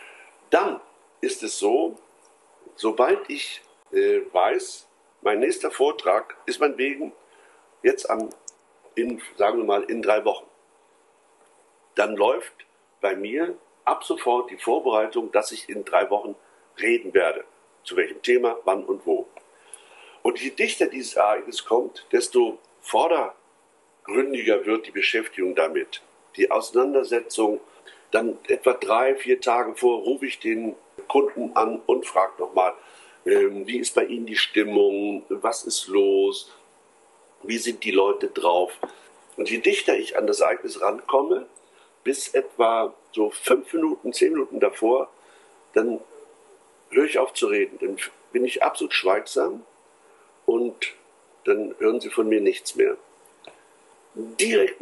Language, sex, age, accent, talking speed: German, male, 60-79, German, 130 wpm